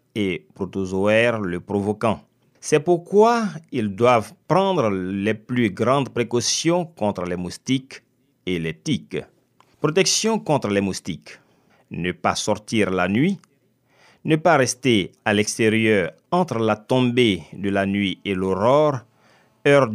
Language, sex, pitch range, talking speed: French, male, 100-140 Hz, 125 wpm